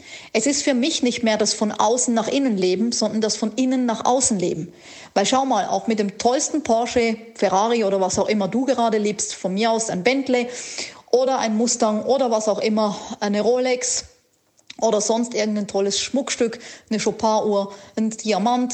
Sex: female